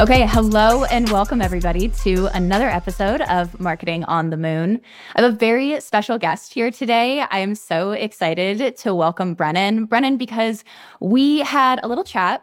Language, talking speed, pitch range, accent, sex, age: English, 170 wpm, 195-250 Hz, American, female, 10-29